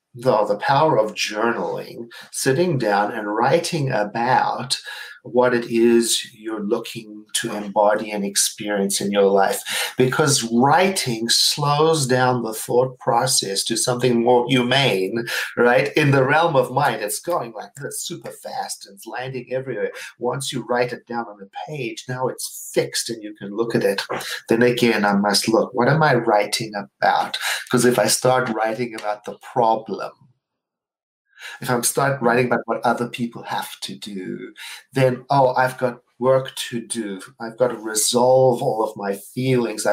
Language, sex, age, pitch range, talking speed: English, male, 40-59, 110-130 Hz, 170 wpm